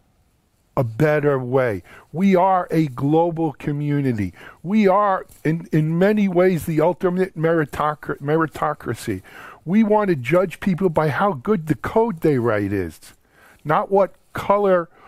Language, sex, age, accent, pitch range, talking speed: English, male, 50-69, American, 150-195 Hz, 135 wpm